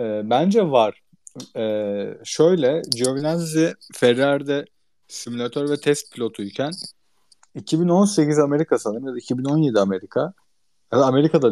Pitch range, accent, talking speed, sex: 115-165 Hz, native, 95 wpm, male